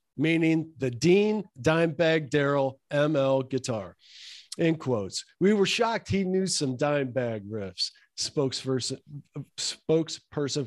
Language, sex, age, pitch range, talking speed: English, male, 50-69, 140-185 Hz, 105 wpm